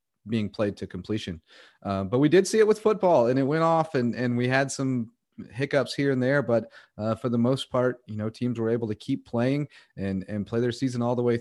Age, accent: 30-49, American